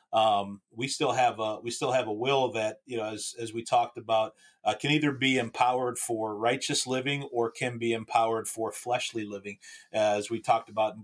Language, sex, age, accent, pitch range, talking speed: English, male, 30-49, American, 115-140 Hz, 210 wpm